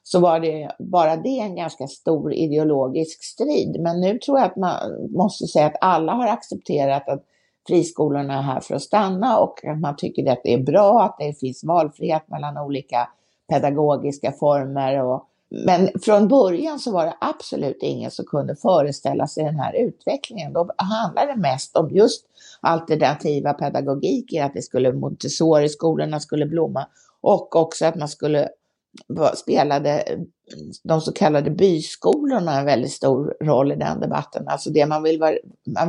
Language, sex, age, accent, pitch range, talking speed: Swedish, female, 60-79, native, 145-175 Hz, 165 wpm